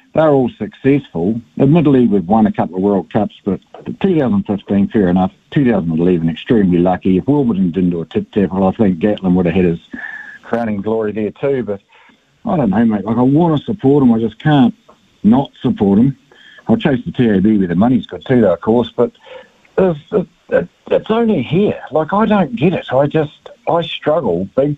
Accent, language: Australian, English